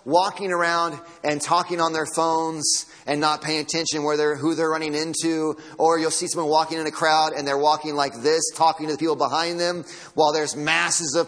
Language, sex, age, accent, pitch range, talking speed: English, male, 30-49, American, 140-165 Hz, 215 wpm